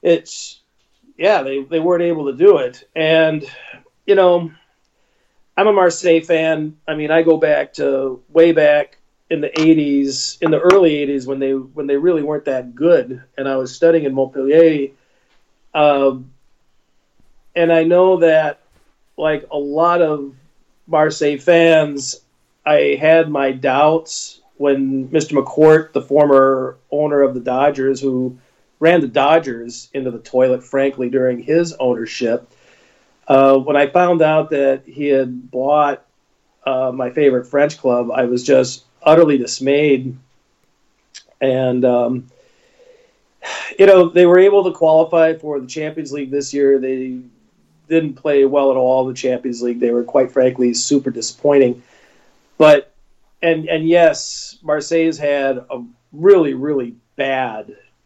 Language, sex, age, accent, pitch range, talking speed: English, male, 40-59, American, 130-160 Hz, 145 wpm